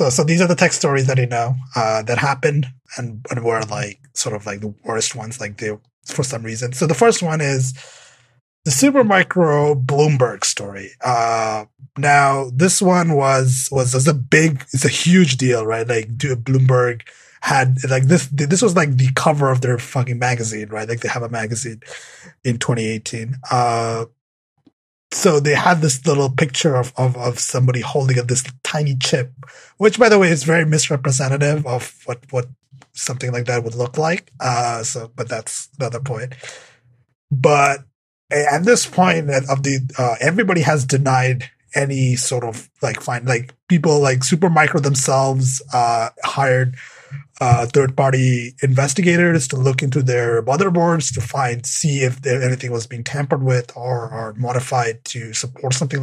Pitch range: 120-145 Hz